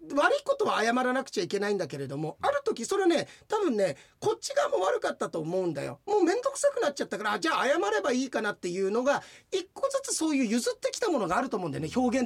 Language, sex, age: Japanese, male, 40-59